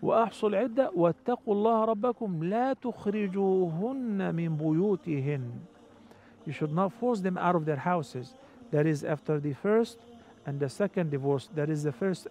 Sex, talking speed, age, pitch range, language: male, 145 wpm, 50-69, 160-235 Hz, English